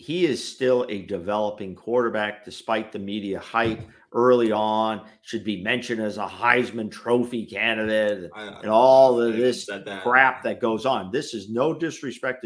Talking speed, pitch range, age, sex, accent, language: 155 wpm, 115-165 Hz, 50-69, male, American, English